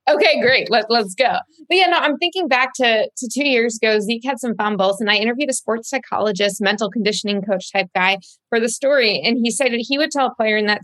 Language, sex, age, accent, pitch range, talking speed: English, female, 20-39, American, 210-300 Hz, 250 wpm